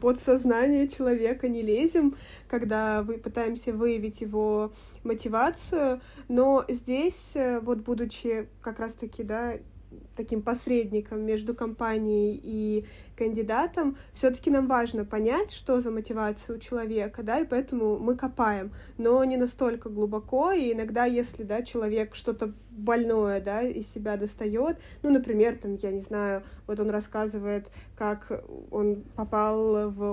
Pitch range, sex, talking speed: 220-270 Hz, female, 135 wpm